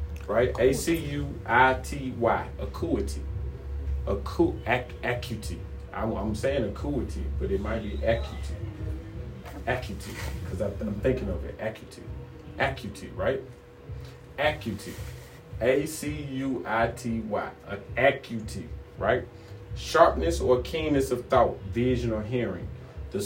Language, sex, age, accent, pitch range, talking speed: English, male, 30-49, American, 90-135 Hz, 115 wpm